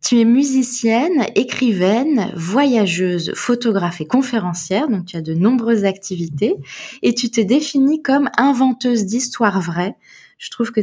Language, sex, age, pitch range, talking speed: French, female, 20-39, 185-235 Hz, 140 wpm